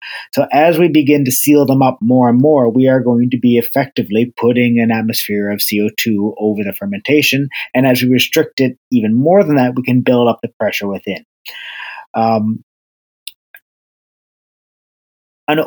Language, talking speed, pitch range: English, 165 wpm, 110-135 Hz